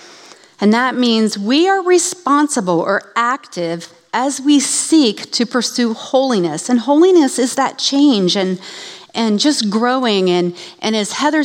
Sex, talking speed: female, 140 wpm